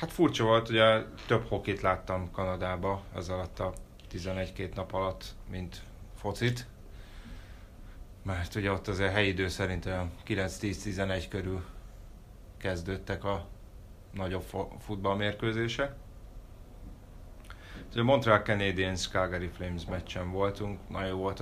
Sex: male